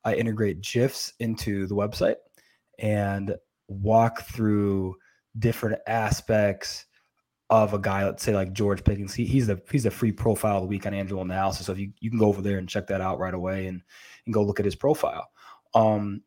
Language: English